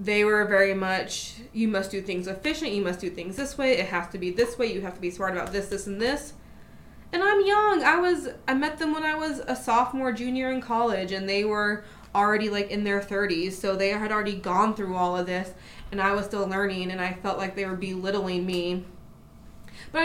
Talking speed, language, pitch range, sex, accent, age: 235 wpm, English, 180-215 Hz, female, American, 20-39